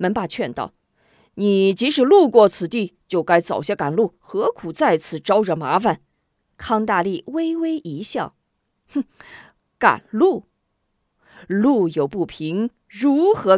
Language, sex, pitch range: Chinese, female, 165-255 Hz